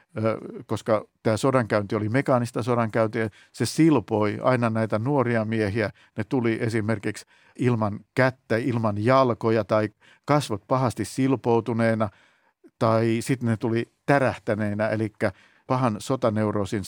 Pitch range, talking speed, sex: 110-140 Hz, 110 wpm, male